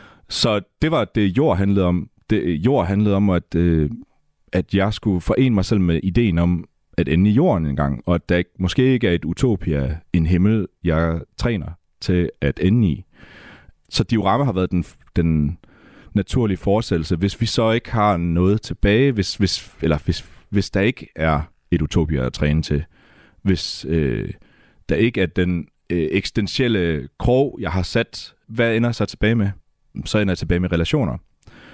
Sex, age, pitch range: male, 30-49, 85-110 Hz